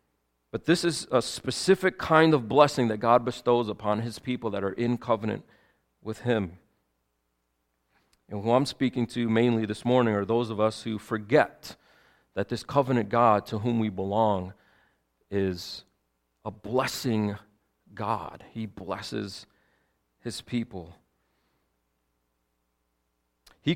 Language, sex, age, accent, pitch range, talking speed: English, male, 40-59, American, 105-140 Hz, 130 wpm